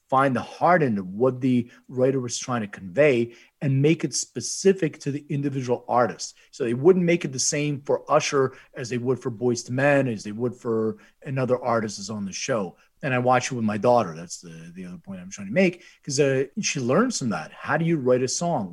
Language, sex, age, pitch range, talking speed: English, male, 40-59, 115-155 Hz, 235 wpm